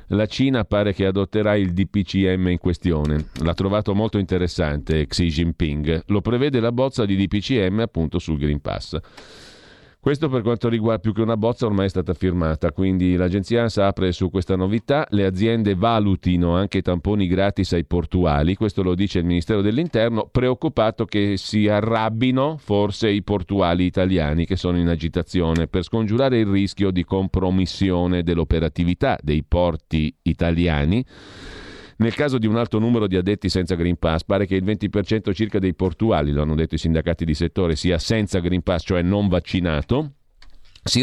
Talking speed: 165 wpm